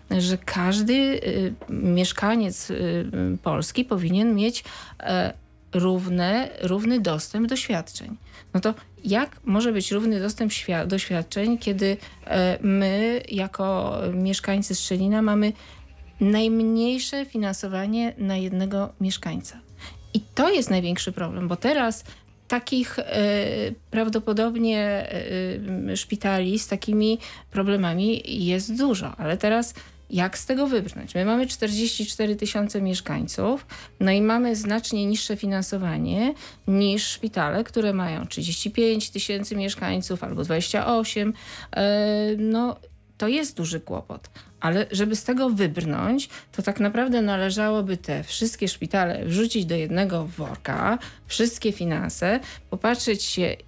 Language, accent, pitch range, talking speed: Polish, native, 185-225 Hz, 105 wpm